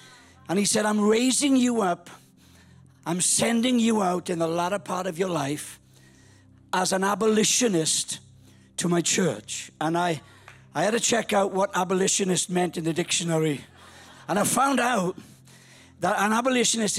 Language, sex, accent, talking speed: English, male, British, 155 wpm